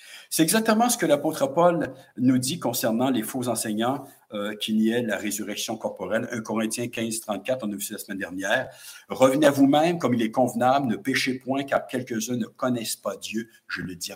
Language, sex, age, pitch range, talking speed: English, male, 60-79, 105-170 Hz, 200 wpm